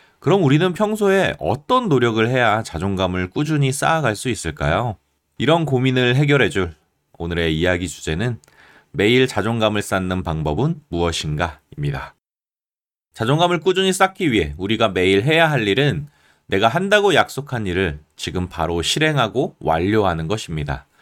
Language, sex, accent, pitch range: Korean, male, native, 85-145 Hz